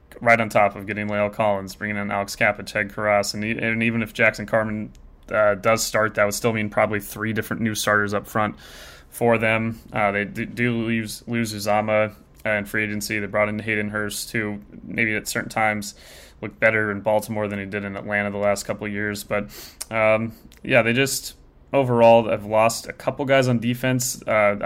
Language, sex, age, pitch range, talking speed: English, male, 20-39, 100-115 Hz, 190 wpm